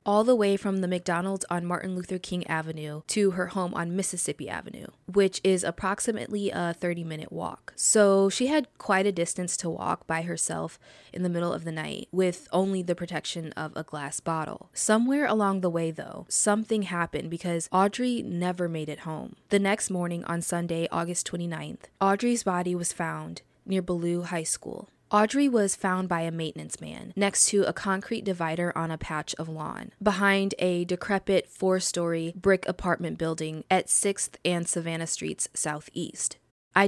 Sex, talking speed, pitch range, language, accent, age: female, 170 wpm, 170-195 Hz, English, American, 20-39